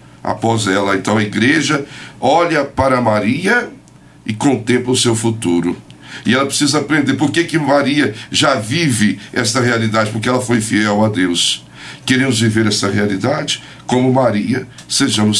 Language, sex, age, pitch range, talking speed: Portuguese, male, 60-79, 105-135 Hz, 145 wpm